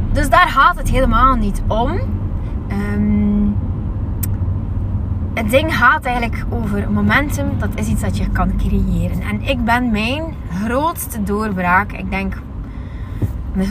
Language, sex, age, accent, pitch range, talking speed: Dutch, female, 20-39, Dutch, 90-105 Hz, 125 wpm